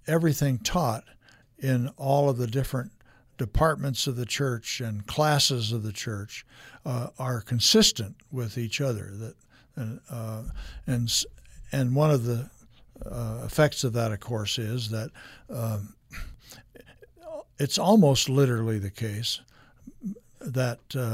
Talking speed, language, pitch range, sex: 125 wpm, English, 115-140 Hz, male